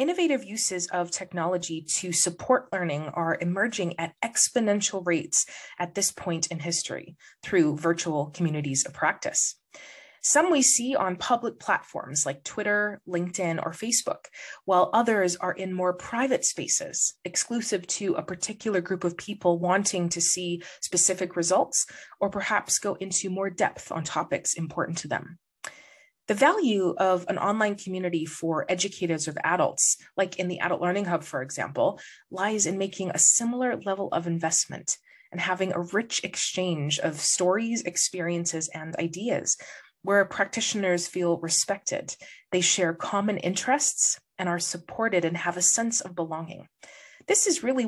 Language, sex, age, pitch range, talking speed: English, female, 20-39, 170-205 Hz, 150 wpm